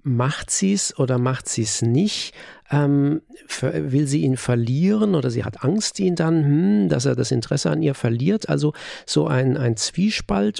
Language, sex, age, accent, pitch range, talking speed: German, male, 50-69, German, 130-165 Hz, 185 wpm